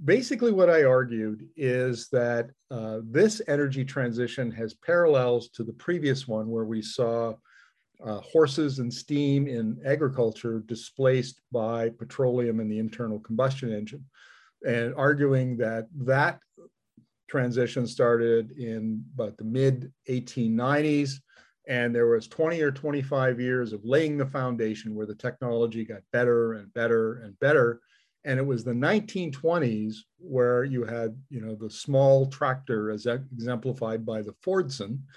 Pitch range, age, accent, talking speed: 115-135 Hz, 50-69, American, 140 wpm